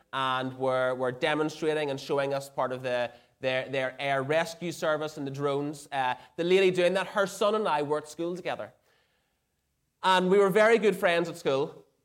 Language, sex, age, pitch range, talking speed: English, male, 20-39, 125-160 Hz, 190 wpm